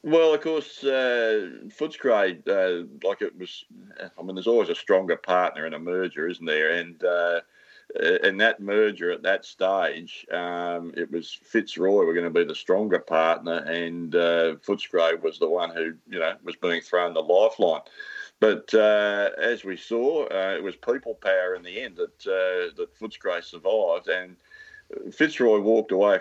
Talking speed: 175 wpm